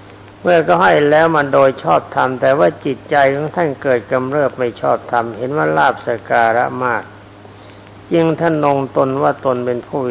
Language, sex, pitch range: Thai, male, 100-135 Hz